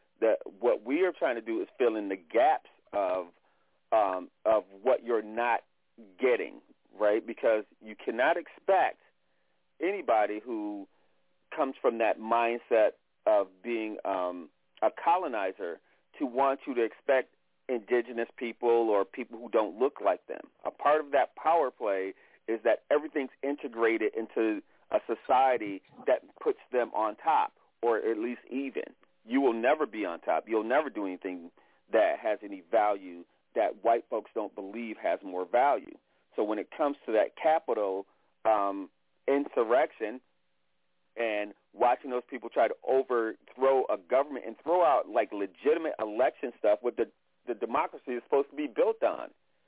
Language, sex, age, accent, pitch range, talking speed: English, male, 40-59, American, 100-145 Hz, 150 wpm